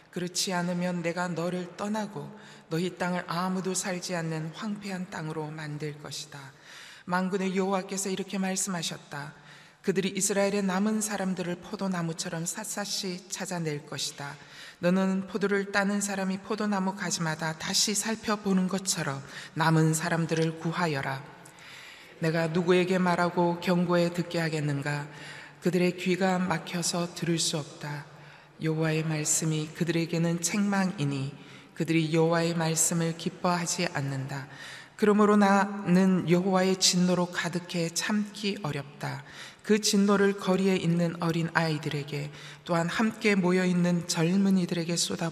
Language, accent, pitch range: Korean, native, 160-190 Hz